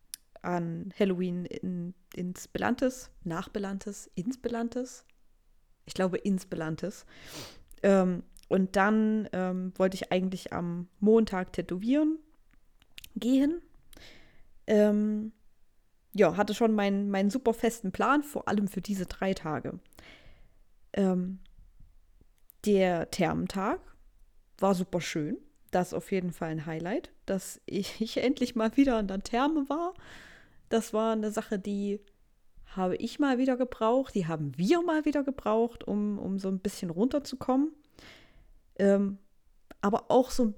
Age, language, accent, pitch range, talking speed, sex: 20-39, German, German, 185-235 Hz, 130 wpm, female